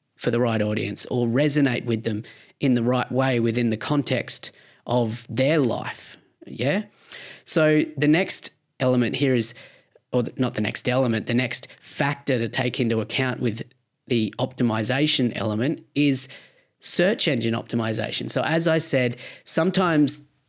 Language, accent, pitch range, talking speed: English, Australian, 120-140 Hz, 145 wpm